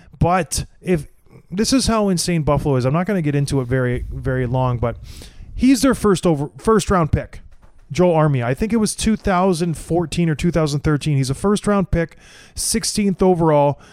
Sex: male